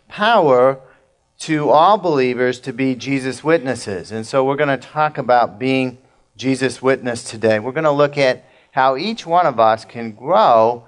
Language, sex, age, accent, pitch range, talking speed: English, male, 50-69, American, 120-145 Hz, 170 wpm